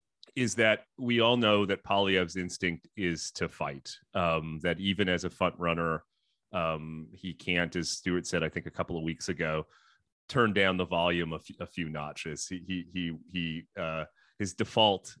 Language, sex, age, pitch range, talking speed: English, male, 30-49, 85-110 Hz, 185 wpm